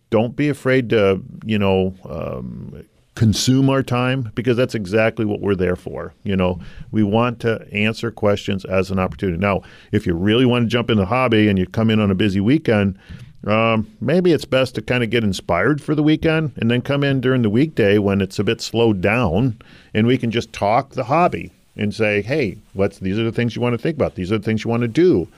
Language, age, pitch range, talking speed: English, 50-69, 100-120 Hz, 230 wpm